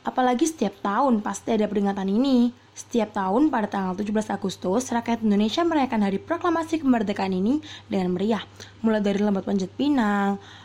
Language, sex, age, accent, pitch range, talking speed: Indonesian, female, 20-39, native, 205-255 Hz, 150 wpm